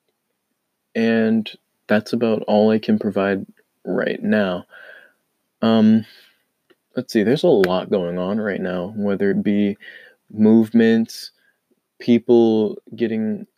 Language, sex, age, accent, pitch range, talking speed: English, male, 20-39, American, 100-115 Hz, 110 wpm